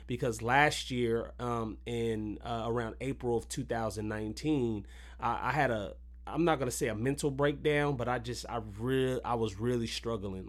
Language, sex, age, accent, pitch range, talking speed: English, male, 30-49, American, 105-125 Hz, 165 wpm